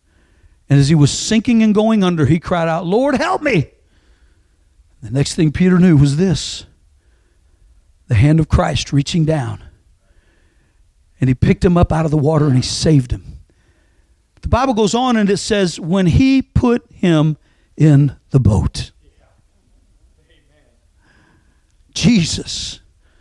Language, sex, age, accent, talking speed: English, male, 60-79, American, 140 wpm